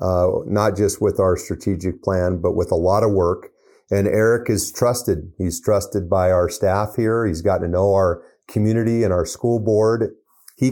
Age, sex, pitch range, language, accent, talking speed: 50-69, male, 100-115 Hz, English, American, 190 wpm